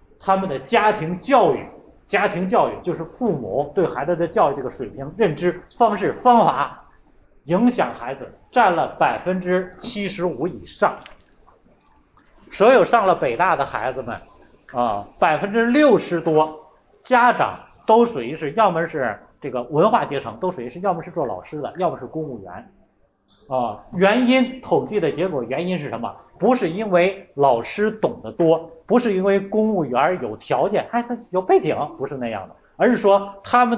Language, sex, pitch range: Chinese, male, 170-235 Hz